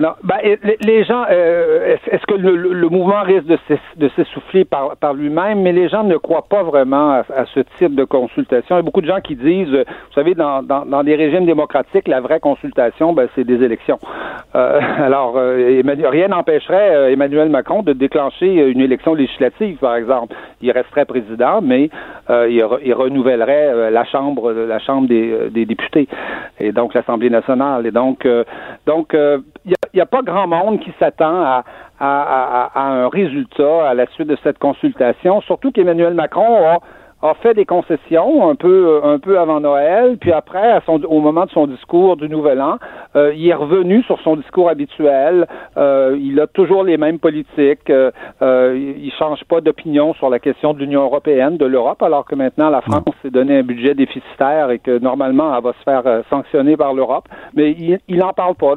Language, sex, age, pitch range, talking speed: French, male, 60-79, 135-180 Hz, 195 wpm